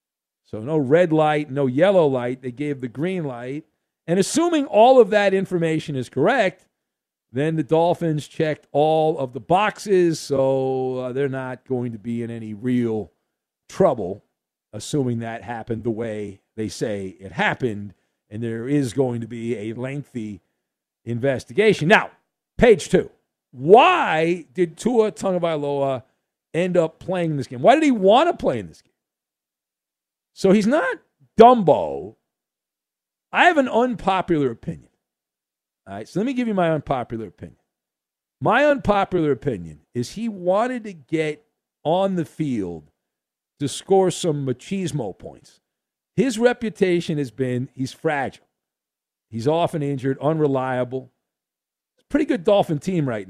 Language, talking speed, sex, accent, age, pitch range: English, 145 wpm, male, American, 50-69, 115-175 Hz